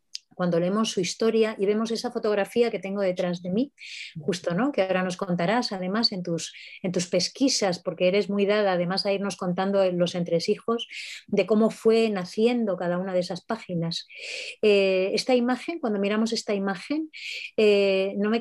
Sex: female